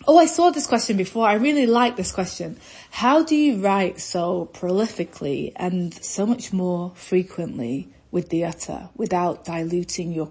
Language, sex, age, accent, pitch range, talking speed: English, female, 20-39, British, 170-215 Hz, 165 wpm